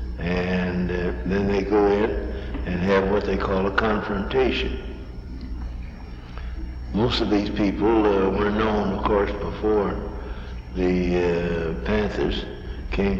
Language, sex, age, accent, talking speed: English, male, 60-79, American, 125 wpm